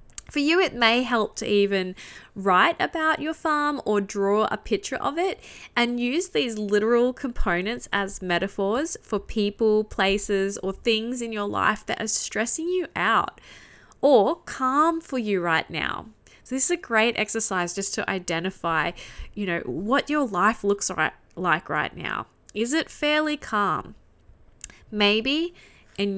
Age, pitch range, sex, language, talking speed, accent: 10-29, 190-240 Hz, female, English, 155 wpm, Australian